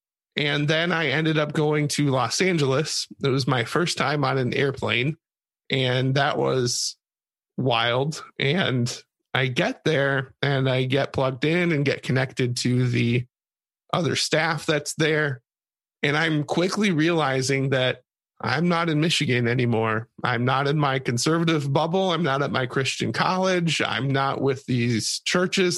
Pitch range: 135-165 Hz